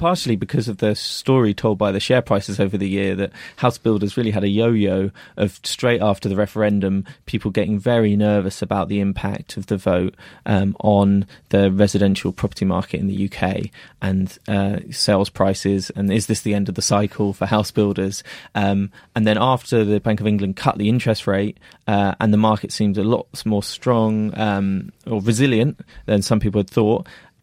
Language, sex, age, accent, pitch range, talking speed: English, male, 20-39, British, 100-110 Hz, 190 wpm